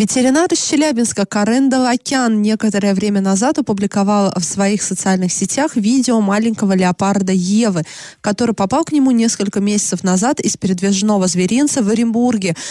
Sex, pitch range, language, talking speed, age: female, 190-235 Hz, Russian, 135 wpm, 20-39